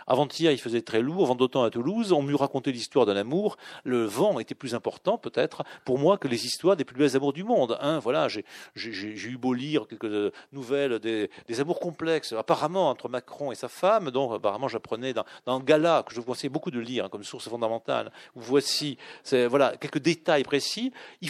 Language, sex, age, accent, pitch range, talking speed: French, male, 40-59, French, 130-185 Hz, 215 wpm